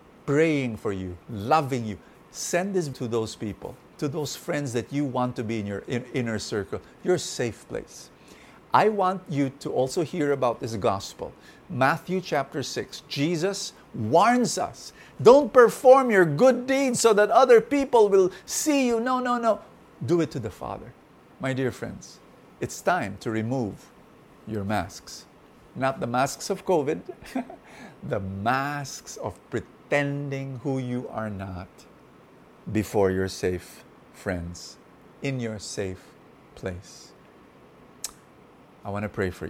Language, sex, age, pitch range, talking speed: English, male, 50-69, 105-170 Hz, 145 wpm